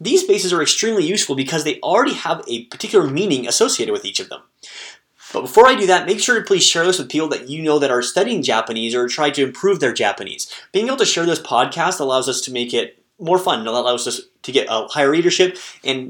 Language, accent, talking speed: English, American, 240 wpm